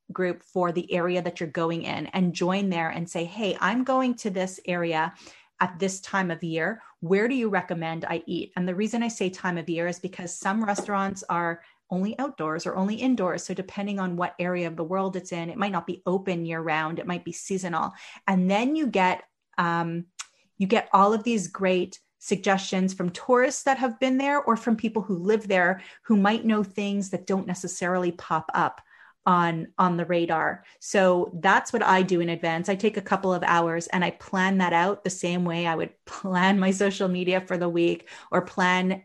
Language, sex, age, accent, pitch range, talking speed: English, female, 30-49, American, 170-200 Hz, 210 wpm